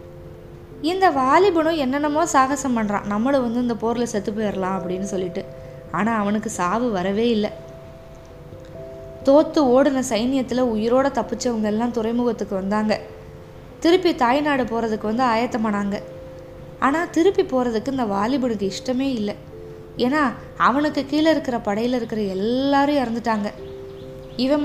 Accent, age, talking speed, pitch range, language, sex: native, 20-39, 110 wpm, 200-270 Hz, Tamil, female